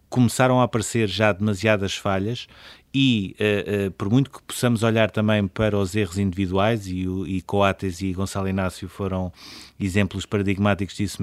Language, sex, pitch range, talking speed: Portuguese, male, 100-115 Hz, 145 wpm